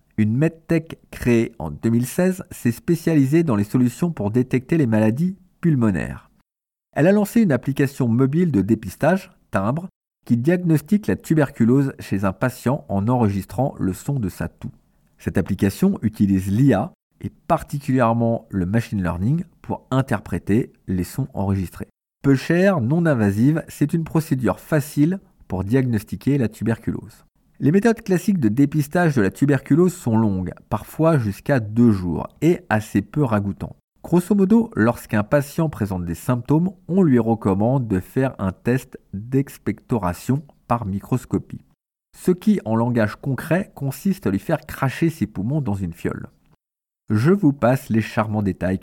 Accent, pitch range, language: French, 105-160 Hz, French